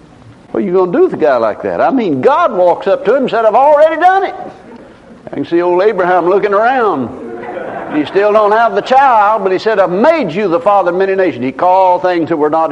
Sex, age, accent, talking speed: male, 60-79, American, 255 wpm